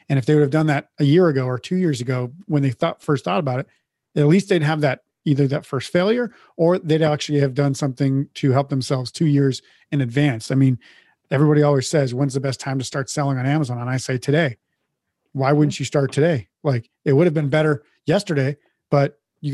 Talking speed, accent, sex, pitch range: 230 wpm, American, male, 135-150 Hz